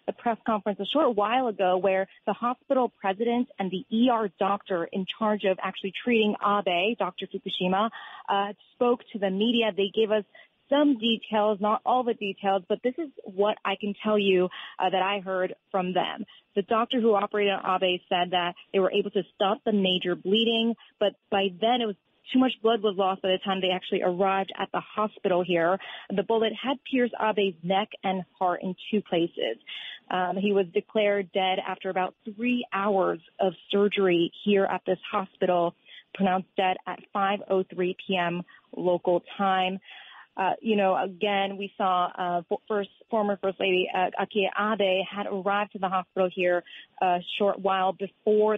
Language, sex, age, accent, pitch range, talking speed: English, female, 30-49, American, 185-215 Hz, 180 wpm